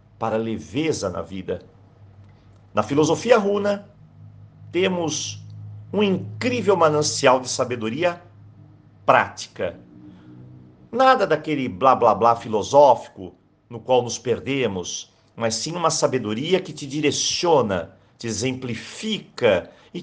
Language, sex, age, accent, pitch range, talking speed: Portuguese, male, 50-69, Brazilian, 115-175 Hz, 95 wpm